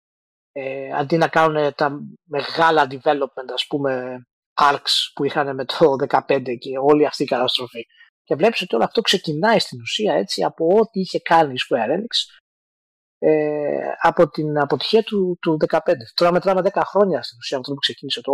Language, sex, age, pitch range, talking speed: Greek, male, 30-49, 145-205 Hz, 175 wpm